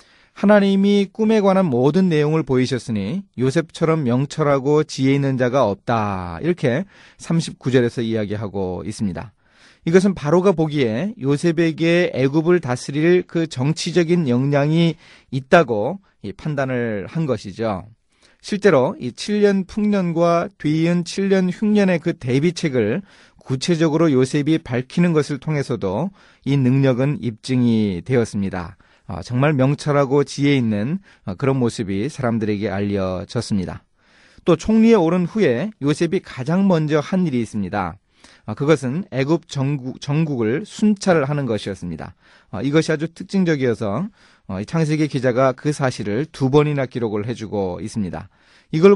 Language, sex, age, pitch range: Korean, male, 30-49, 120-170 Hz